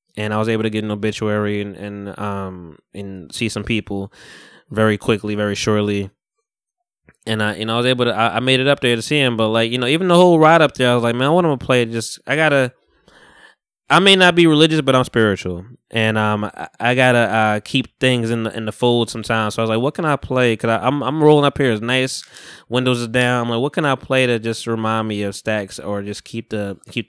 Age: 10-29